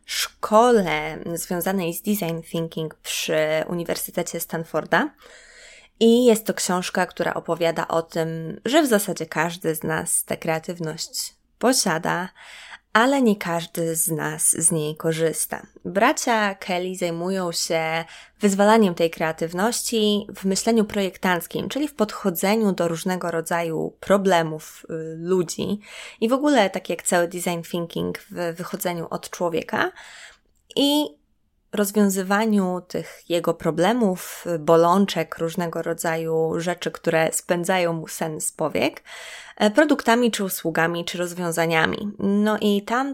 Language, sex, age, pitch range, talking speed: Polish, female, 20-39, 165-205 Hz, 120 wpm